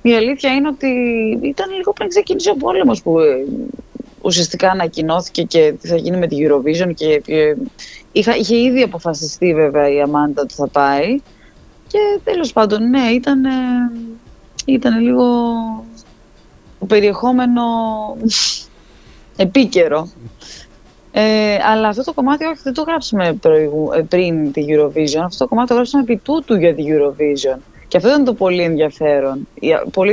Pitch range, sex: 170-250 Hz, female